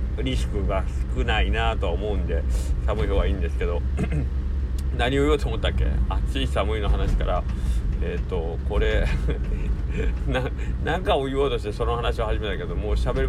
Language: Japanese